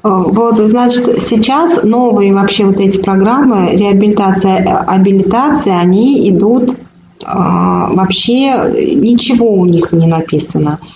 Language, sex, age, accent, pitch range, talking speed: Russian, female, 30-49, native, 195-245 Hz, 100 wpm